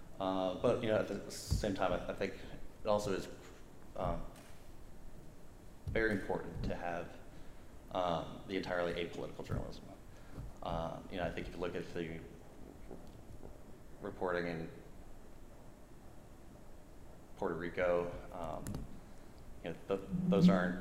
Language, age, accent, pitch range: English, 30-49, American, 85-95 Hz